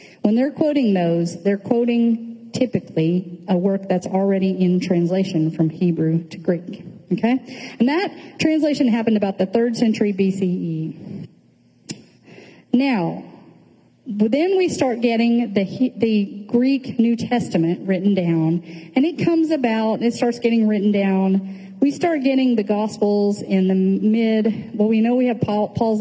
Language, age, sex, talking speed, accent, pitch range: English, 40-59, female, 145 wpm, American, 180-235 Hz